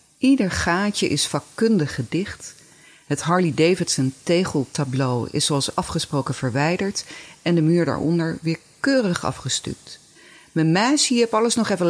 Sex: female